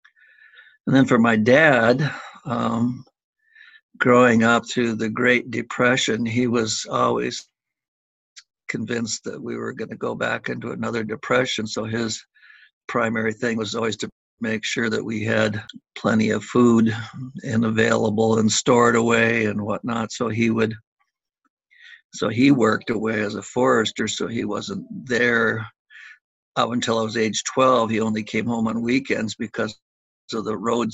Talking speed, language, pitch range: 150 wpm, English, 110-120 Hz